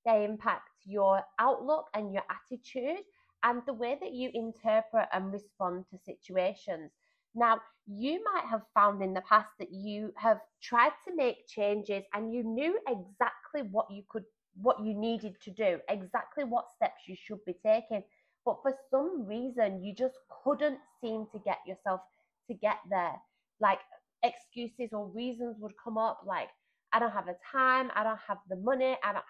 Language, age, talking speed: English, 20-39, 170 wpm